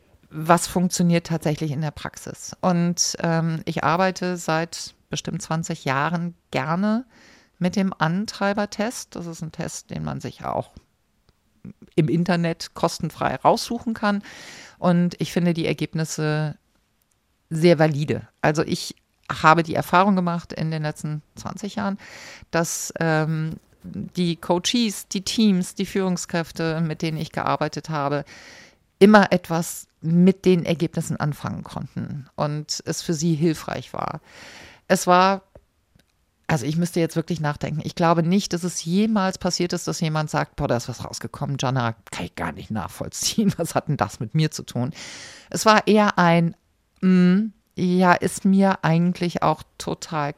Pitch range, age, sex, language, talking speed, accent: 155-185 Hz, 50-69, female, German, 145 wpm, German